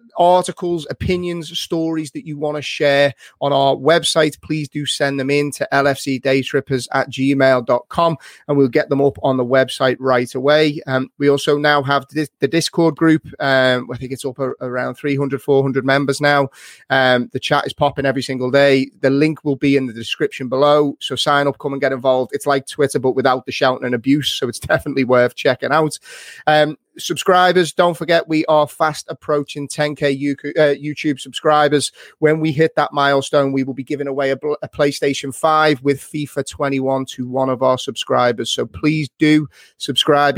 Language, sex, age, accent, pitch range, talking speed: English, male, 30-49, British, 130-155 Hz, 180 wpm